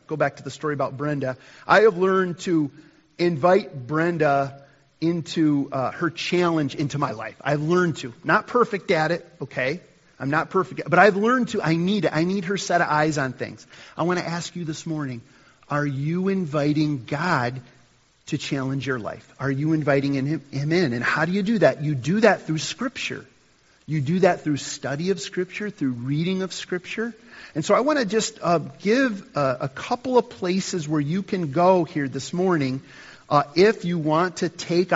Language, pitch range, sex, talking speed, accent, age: English, 140-180 Hz, male, 200 wpm, American, 40-59